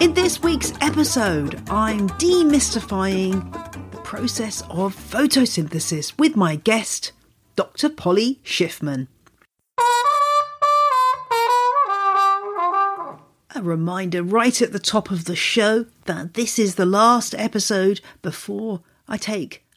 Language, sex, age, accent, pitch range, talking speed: English, female, 50-69, British, 165-245 Hz, 105 wpm